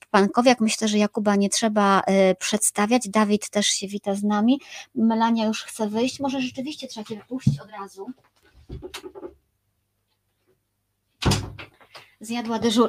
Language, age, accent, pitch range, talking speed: Polish, 30-49, native, 205-255 Hz, 125 wpm